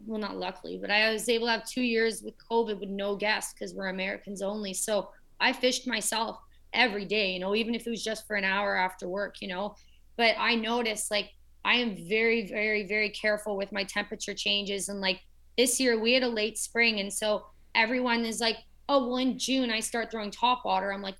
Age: 20-39